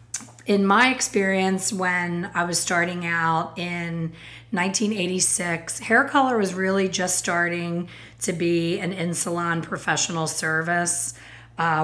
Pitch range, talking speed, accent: 170-190 Hz, 115 wpm, American